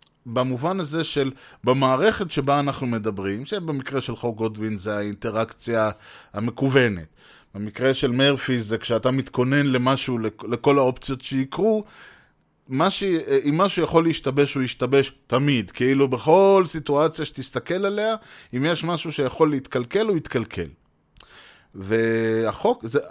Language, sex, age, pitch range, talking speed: Hebrew, male, 20-39, 115-150 Hz, 115 wpm